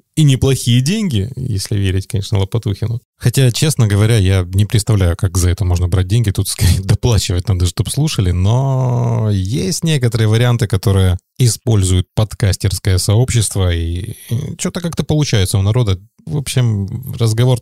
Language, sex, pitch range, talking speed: Russian, male, 95-120 Hz, 145 wpm